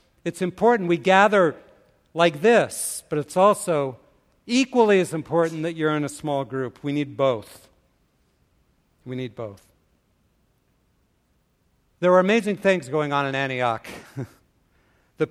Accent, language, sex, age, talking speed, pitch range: American, English, male, 50-69, 130 wpm, 150-190 Hz